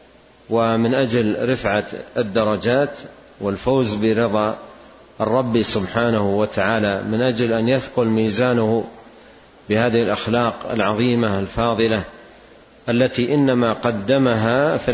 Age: 40-59